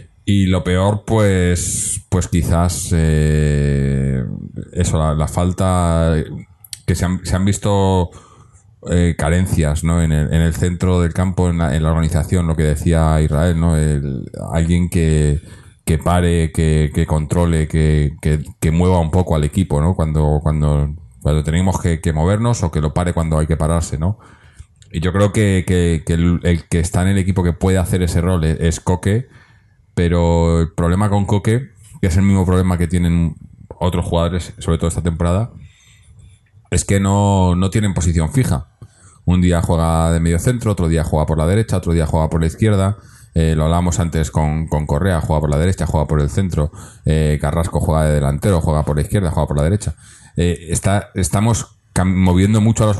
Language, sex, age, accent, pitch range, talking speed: Spanish, male, 30-49, Spanish, 80-100 Hz, 190 wpm